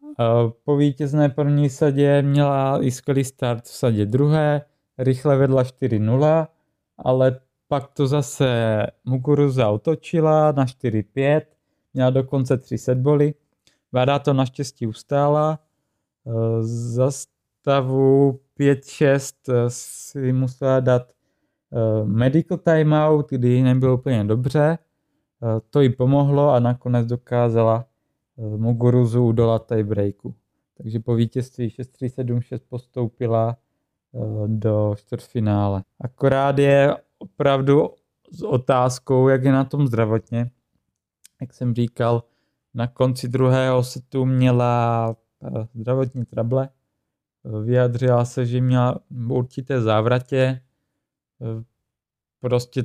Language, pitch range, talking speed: Czech, 120-140 Hz, 100 wpm